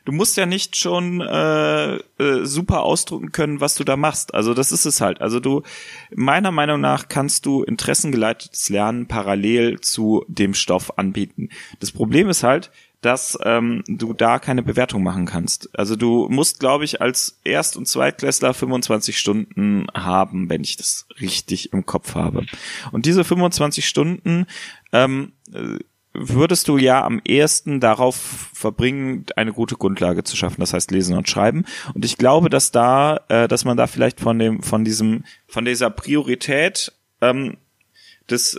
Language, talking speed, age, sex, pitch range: German, 160 wpm, 30-49, male, 110-145 Hz